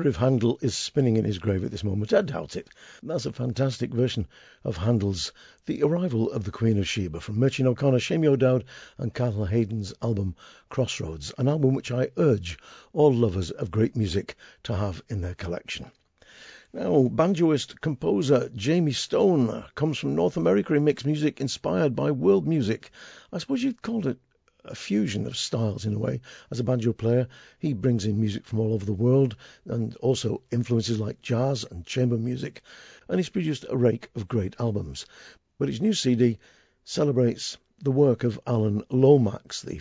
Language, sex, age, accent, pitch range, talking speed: English, male, 50-69, British, 105-130 Hz, 180 wpm